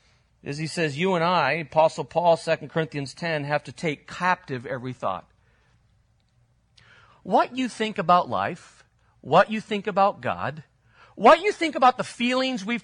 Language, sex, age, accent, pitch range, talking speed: English, male, 40-59, American, 130-195 Hz, 160 wpm